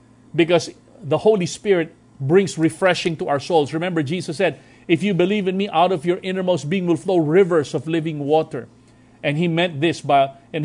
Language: English